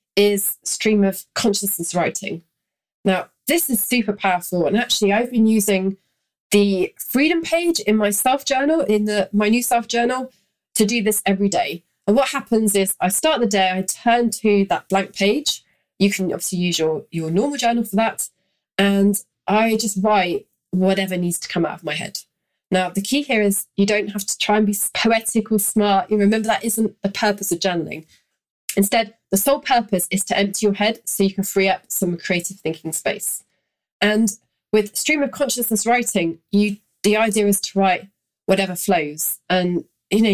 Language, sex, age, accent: English, female, 30-49, British